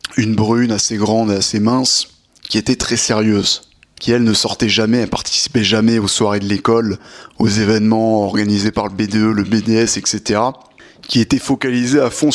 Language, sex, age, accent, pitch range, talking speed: French, male, 20-39, French, 110-130 Hz, 180 wpm